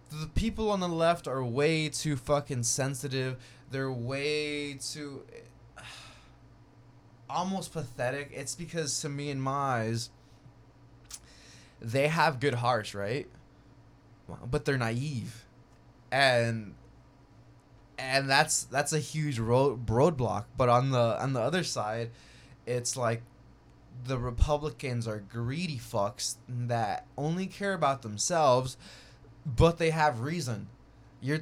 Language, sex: English, male